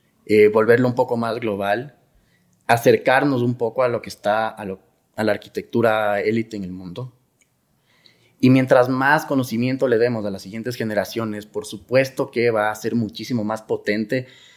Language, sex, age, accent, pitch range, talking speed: Spanish, male, 30-49, Mexican, 100-120 Hz, 170 wpm